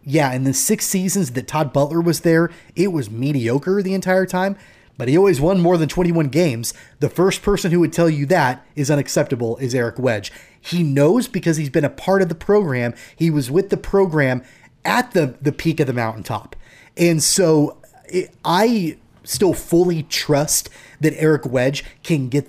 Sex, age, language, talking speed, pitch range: male, 30-49, English, 190 wpm, 135-180 Hz